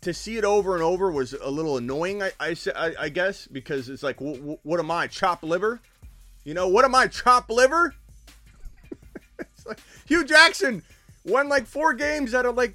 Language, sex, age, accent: English, male, 30-49, American